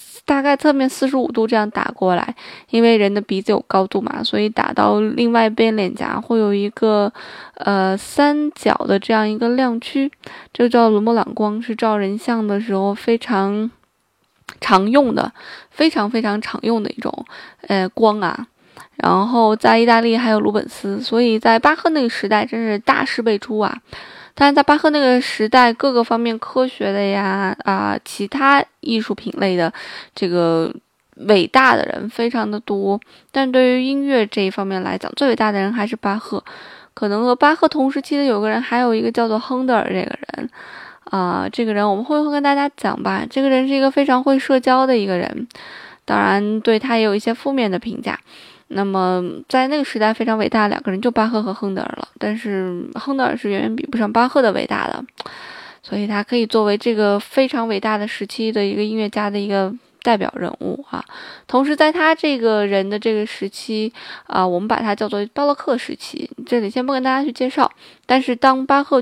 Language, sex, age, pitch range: Chinese, female, 20-39, 205-260 Hz